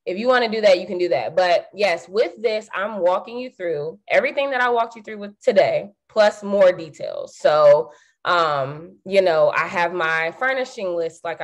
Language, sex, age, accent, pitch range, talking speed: English, female, 20-39, American, 180-260 Hz, 205 wpm